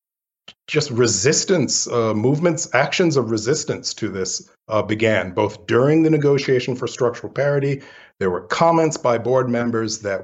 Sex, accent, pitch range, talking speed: male, American, 105-130 Hz, 145 wpm